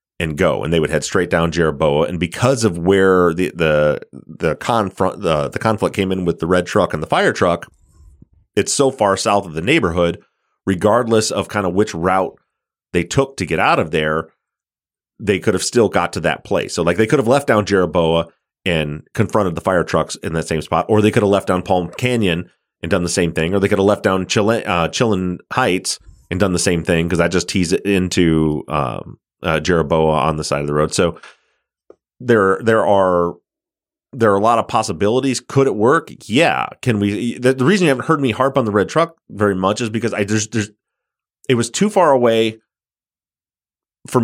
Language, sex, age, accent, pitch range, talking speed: English, male, 30-49, American, 85-110 Hz, 220 wpm